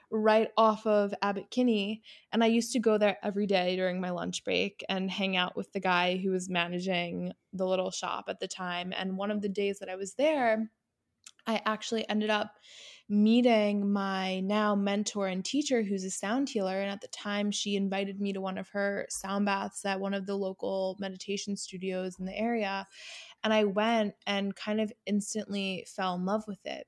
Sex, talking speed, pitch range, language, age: female, 200 wpm, 190-210 Hz, English, 20-39